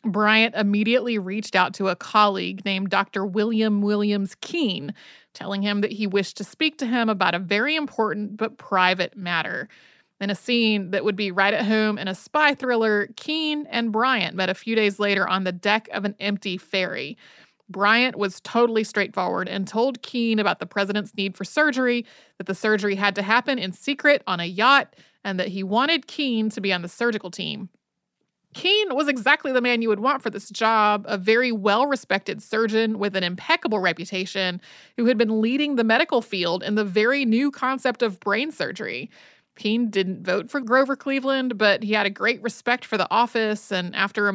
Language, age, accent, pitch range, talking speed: English, 30-49, American, 195-245 Hz, 195 wpm